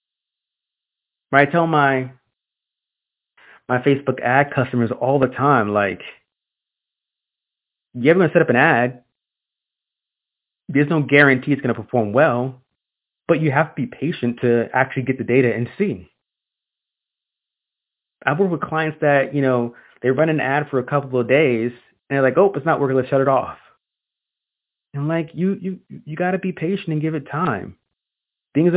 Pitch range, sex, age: 125-165 Hz, male, 20-39